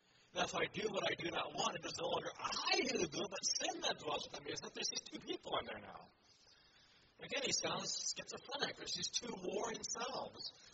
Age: 60-79